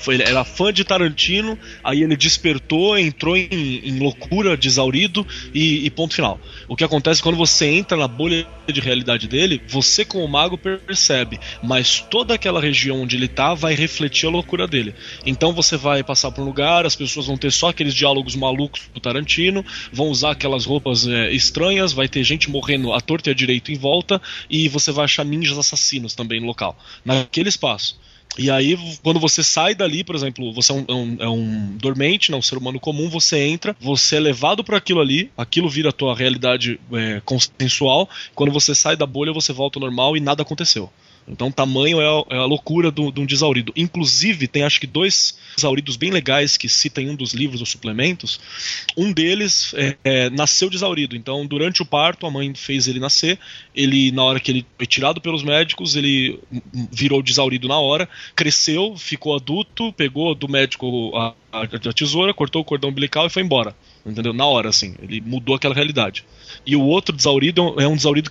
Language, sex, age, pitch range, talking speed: Portuguese, male, 20-39, 130-160 Hz, 195 wpm